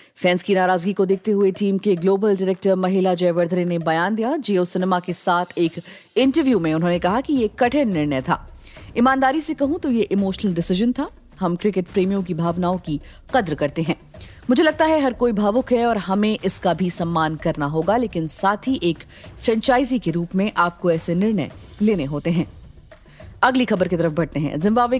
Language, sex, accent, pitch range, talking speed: Hindi, female, native, 175-220 Hz, 190 wpm